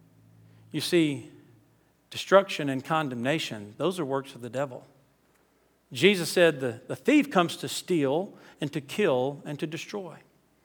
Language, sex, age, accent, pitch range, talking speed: English, male, 50-69, American, 120-165 Hz, 140 wpm